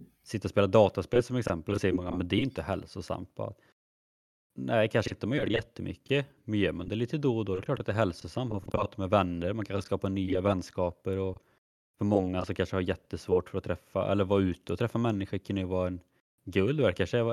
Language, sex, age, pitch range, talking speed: Swedish, male, 20-39, 90-105 Hz, 235 wpm